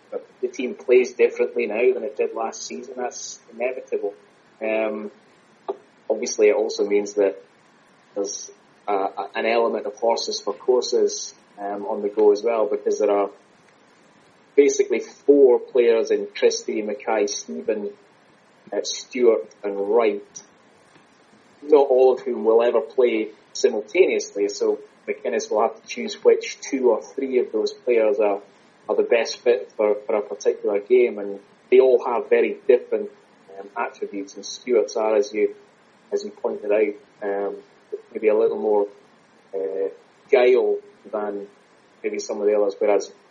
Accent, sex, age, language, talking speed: British, male, 20-39, English, 150 wpm